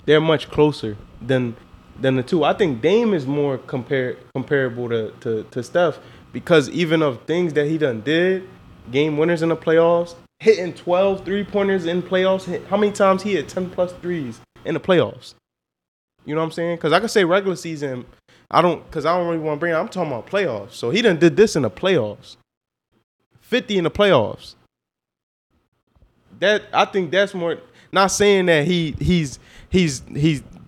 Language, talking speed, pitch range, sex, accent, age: English, 190 wpm, 145-195 Hz, male, American, 20-39